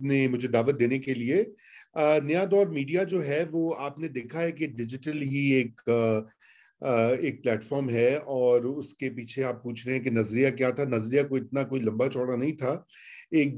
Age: 40-59